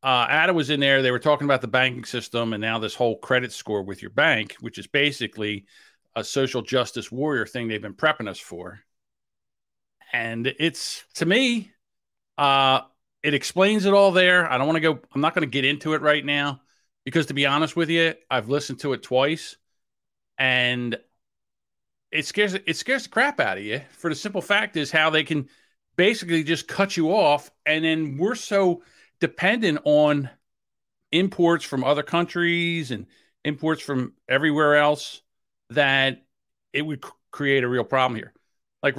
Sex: male